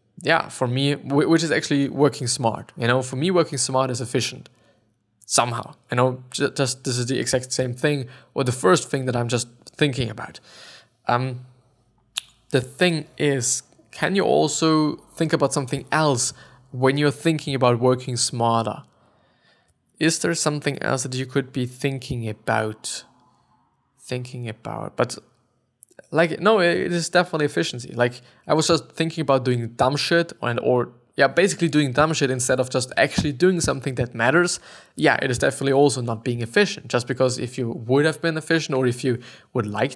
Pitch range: 125-150 Hz